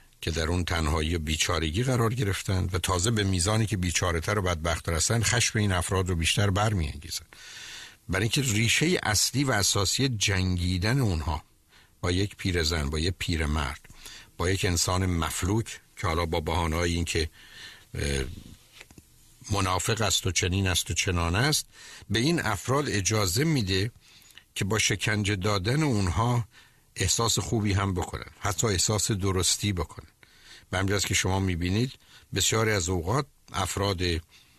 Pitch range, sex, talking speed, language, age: 85-110 Hz, male, 140 wpm, Persian, 60-79